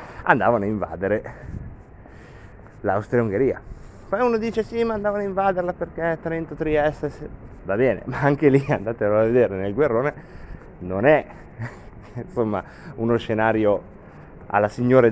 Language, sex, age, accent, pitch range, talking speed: Italian, male, 30-49, native, 100-135 Hz, 125 wpm